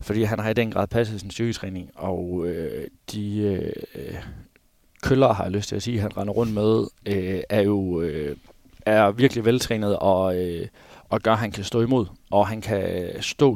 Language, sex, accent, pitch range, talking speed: Danish, male, native, 95-115 Hz, 195 wpm